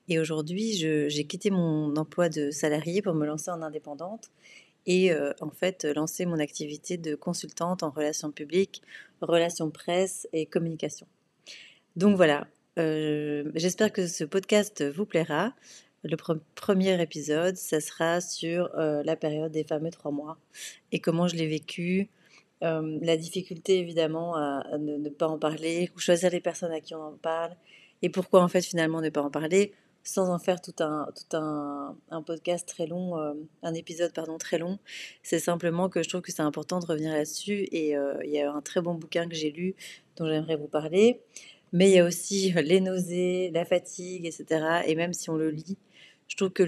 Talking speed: 195 wpm